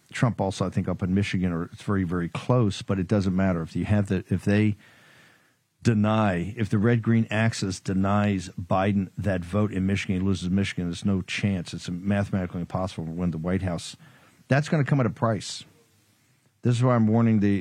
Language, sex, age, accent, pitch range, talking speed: English, male, 50-69, American, 95-110 Hz, 210 wpm